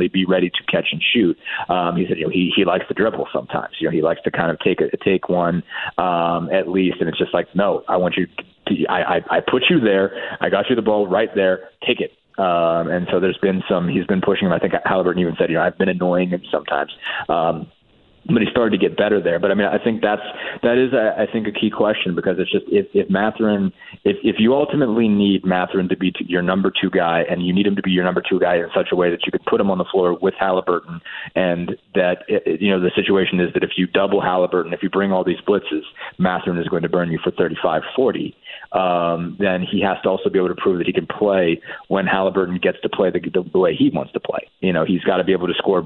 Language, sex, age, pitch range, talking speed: English, male, 30-49, 90-100 Hz, 260 wpm